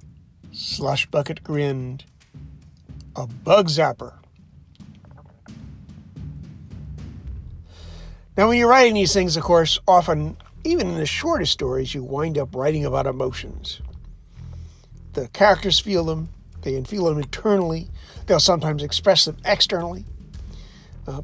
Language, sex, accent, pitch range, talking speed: English, male, American, 120-200 Hz, 110 wpm